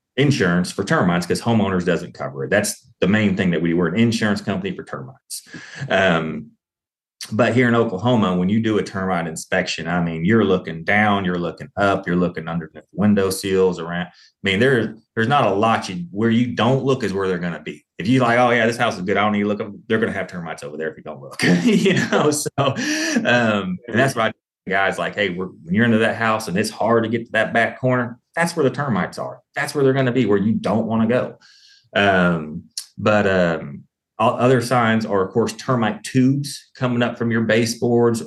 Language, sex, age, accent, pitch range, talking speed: English, male, 30-49, American, 90-115 Hz, 225 wpm